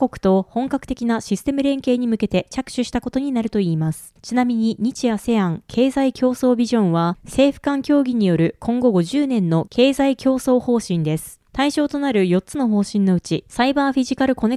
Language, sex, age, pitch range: Japanese, female, 20-39, 195-265 Hz